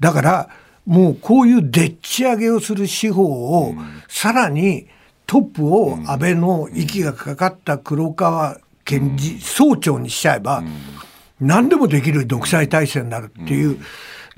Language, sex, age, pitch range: Japanese, male, 60-79, 140-195 Hz